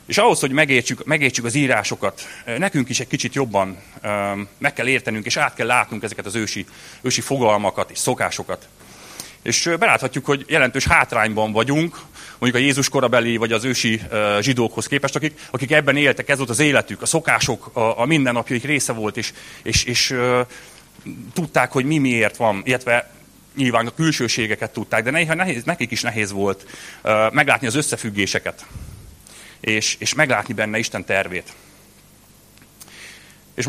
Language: Hungarian